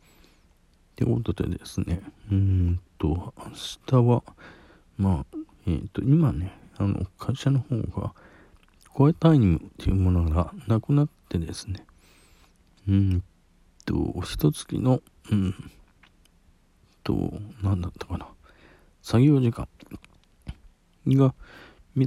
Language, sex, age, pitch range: Japanese, male, 50-69, 85-115 Hz